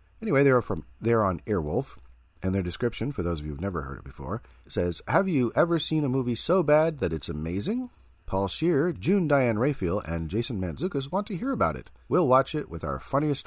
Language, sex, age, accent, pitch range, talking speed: English, male, 40-59, American, 80-115 Hz, 225 wpm